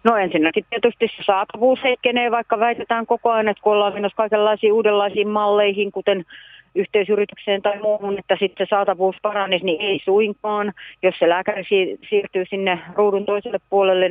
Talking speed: 155 wpm